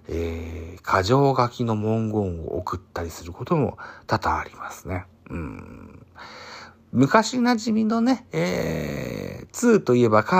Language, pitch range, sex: Japanese, 95-120 Hz, male